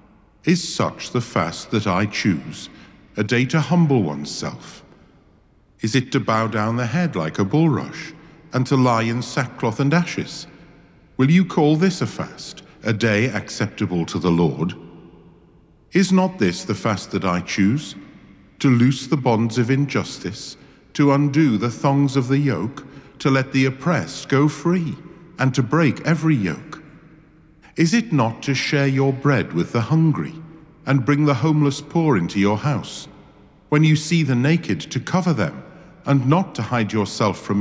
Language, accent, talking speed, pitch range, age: English, British, 170 wpm, 110-155 Hz, 50-69